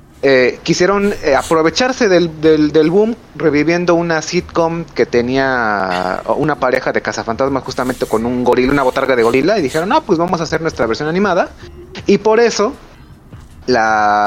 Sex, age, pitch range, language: male, 30-49, 120-175 Hz, Spanish